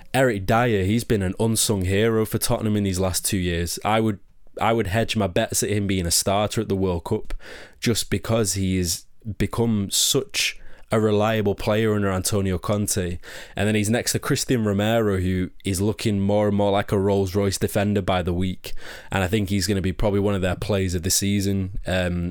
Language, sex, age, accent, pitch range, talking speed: English, male, 20-39, British, 95-110 Hz, 205 wpm